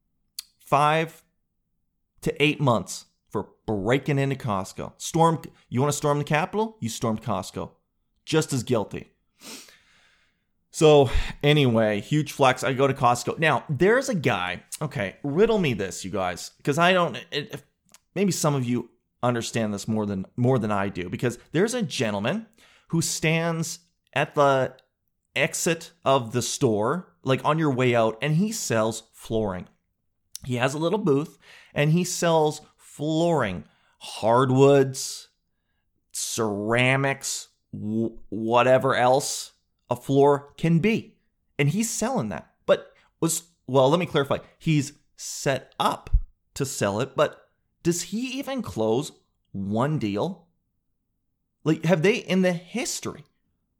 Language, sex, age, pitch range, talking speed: English, male, 30-49, 110-165 Hz, 135 wpm